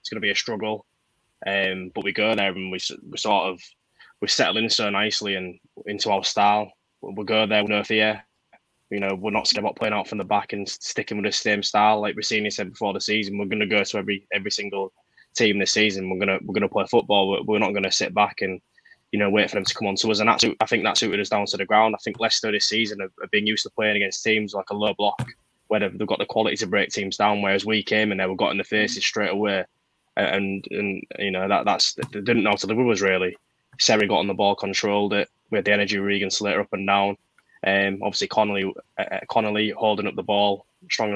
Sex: male